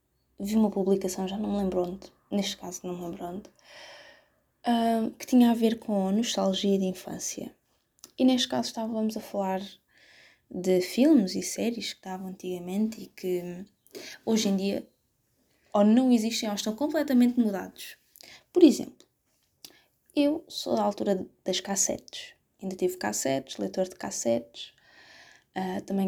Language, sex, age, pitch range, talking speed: Portuguese, female, 20-39, 185-235 Hz, 145 wpm